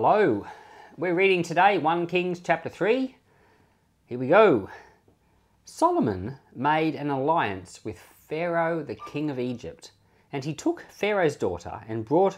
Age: 40-59